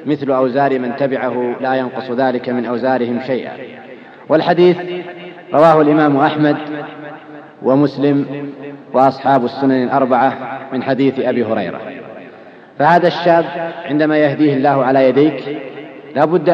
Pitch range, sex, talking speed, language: 135-160 Hz, male, 110 wpm, Arabic